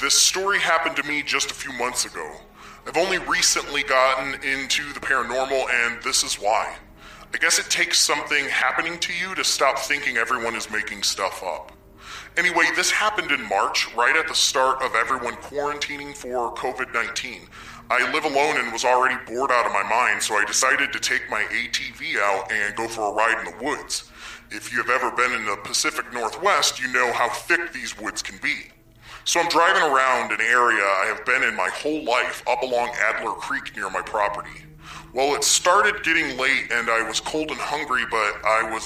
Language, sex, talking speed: English, female, 200 wpm